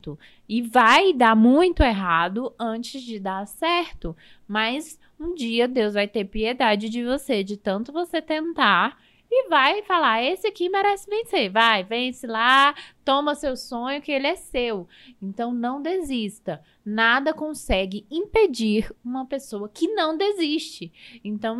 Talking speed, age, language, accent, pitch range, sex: 140 wpm, 20-39, Portuguese, Brazilian, 215-280 Hz, female